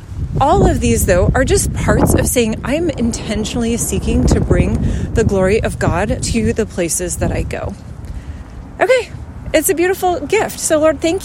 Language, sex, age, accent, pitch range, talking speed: English, female, 30-49, American, 175-275 Hz, 170 wpm